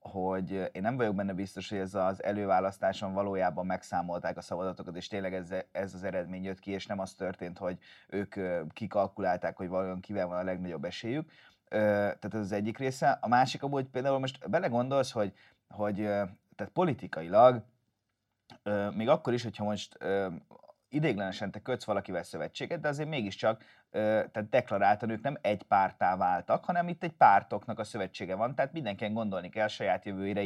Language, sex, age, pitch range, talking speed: Hungarian, male, 30-49, 100-135 Hz, 165 wpm